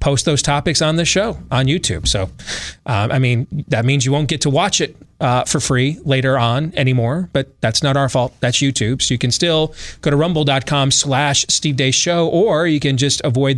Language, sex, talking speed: English, male, 215 wpm